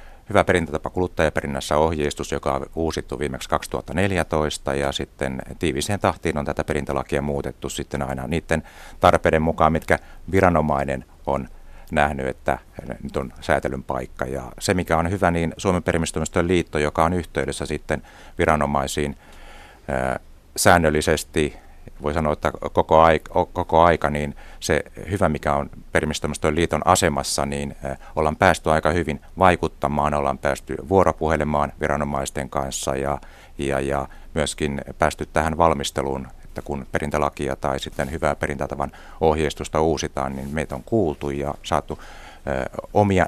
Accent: native